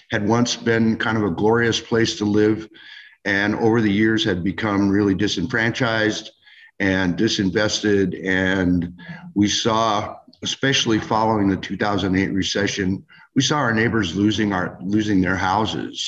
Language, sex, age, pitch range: English, male, 50-69, 95-115 Hz